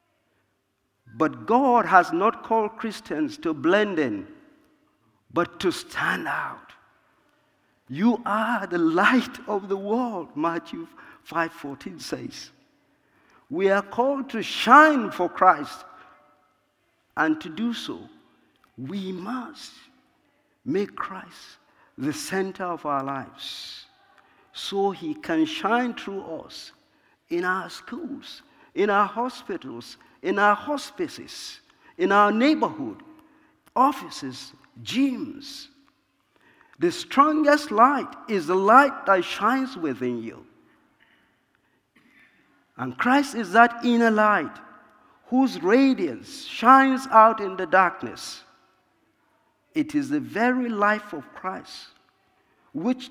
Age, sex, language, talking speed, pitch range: 50-69, male, English, 105 wpm, 195-295 Hz